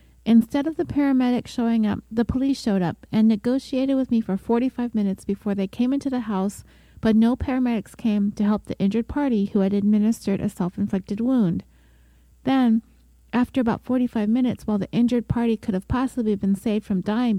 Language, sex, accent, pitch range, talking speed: English, female, American, 195-240 Hz, 185 wpm